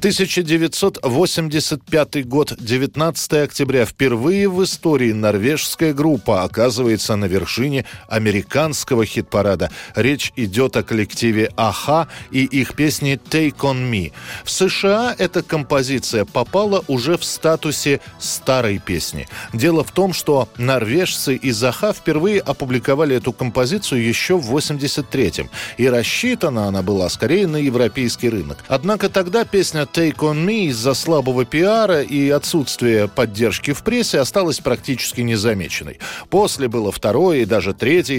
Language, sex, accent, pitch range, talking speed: Russian, male, native, 115-160 Hz, 125 wpm